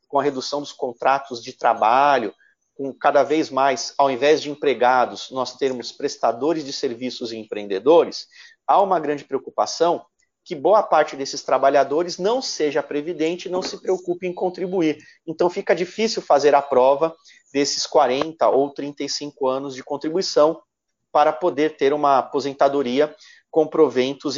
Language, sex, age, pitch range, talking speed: Portuguese, male, 40-59, 140-190 Hz, 150 wpm